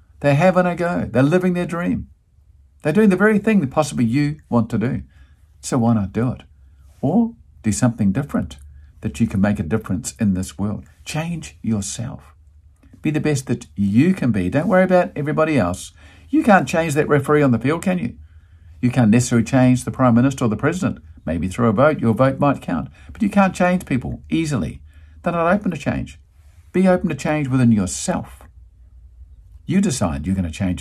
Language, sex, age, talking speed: English, male, 50-69, 200 wpm